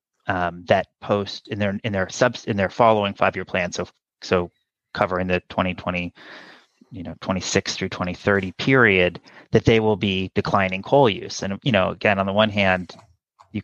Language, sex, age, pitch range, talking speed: English, male, 30-49, 90-105 Hz, 175 wpm